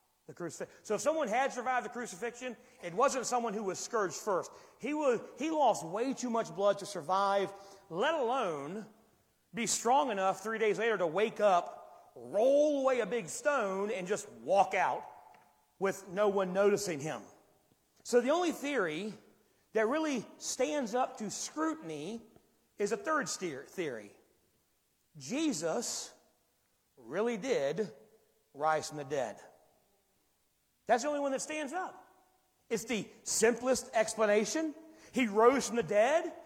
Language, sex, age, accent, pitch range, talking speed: English, male, 40-59, American, 220-295 Hz, 145 wpm